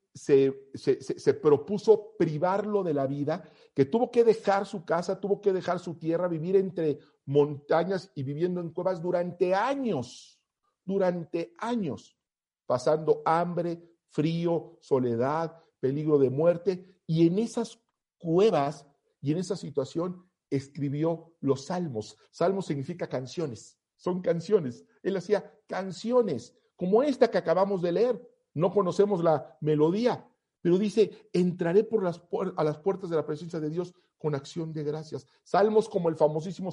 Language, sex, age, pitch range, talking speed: Spanish, male, 50-69, 145-195 Hz, 145 wpm